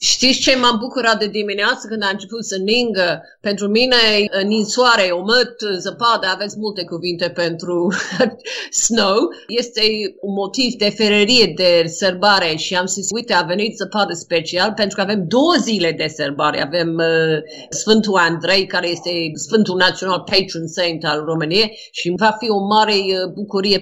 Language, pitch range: Romanian, 180-230 Hz